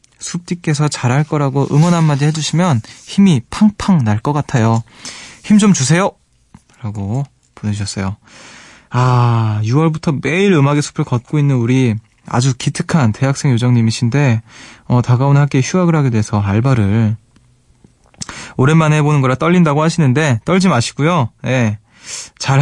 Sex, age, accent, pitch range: male, 20-39, native, 115-155 Hz